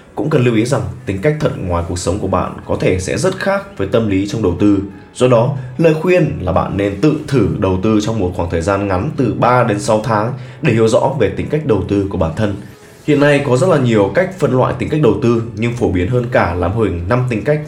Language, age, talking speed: Vietnamese, 20-39, 275 wpm